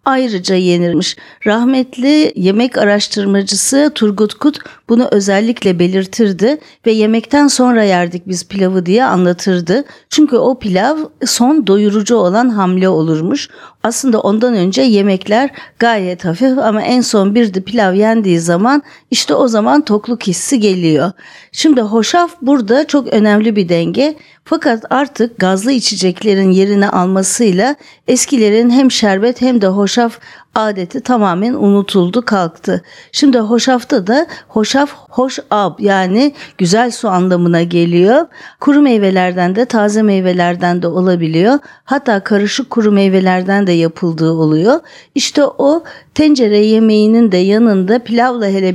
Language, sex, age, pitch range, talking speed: Turkish, female, 50-69, 190-255 Hz, 125 wpm